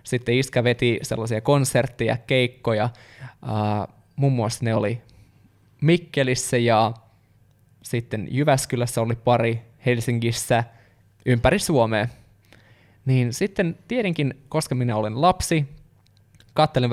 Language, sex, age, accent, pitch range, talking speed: Finnish, male, 20-39, native, 115-135 Hz, 100 wpm